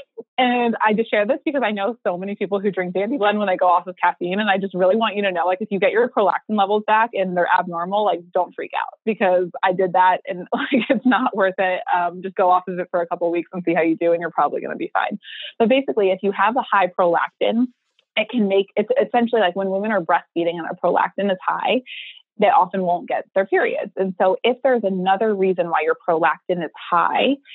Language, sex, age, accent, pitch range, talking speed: English, female, 20-39, American, 175-225 Hz, 255 wpm